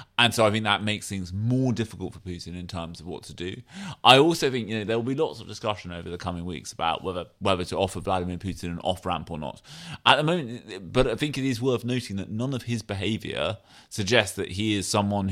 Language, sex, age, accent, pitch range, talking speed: English, male, 30-49, British, 95-115 Hz, 250 wpm